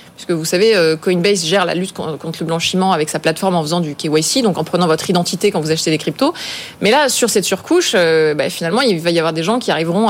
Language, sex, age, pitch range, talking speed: French, female, 20-39, 175-220 Hz, 255 wpm